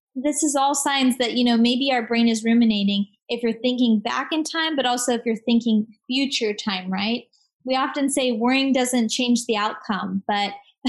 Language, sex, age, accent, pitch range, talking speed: English, female, 20-39, American, 220-275 Hz, 195 wpm